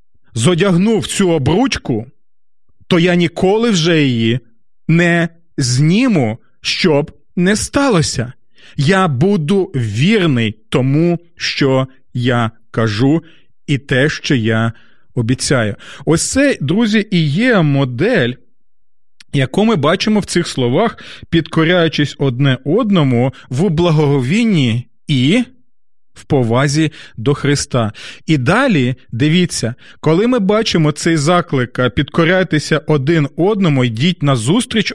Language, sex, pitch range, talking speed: Ukrainian, male, 130-190 Hz, 105 wpm